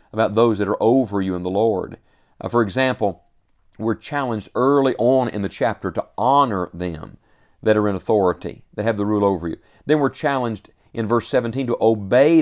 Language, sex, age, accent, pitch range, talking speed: English, male, 50-69, American, 100-135 Hz, 195 wpm